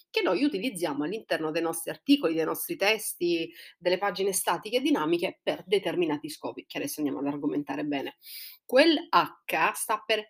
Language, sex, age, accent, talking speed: Italian, female, 30-49, native, 165 wpm